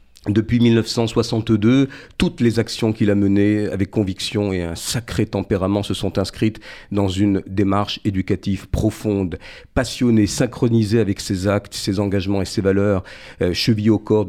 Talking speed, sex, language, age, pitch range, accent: 150 wpm, male, French, 50-69, 100-115 Hz, French